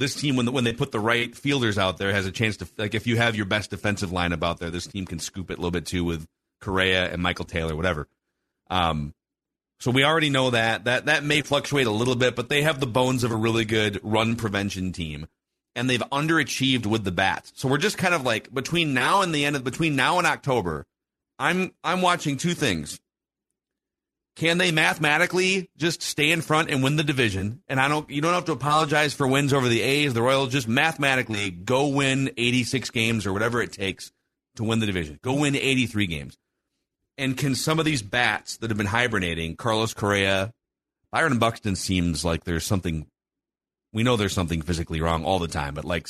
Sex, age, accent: male, 40-59, American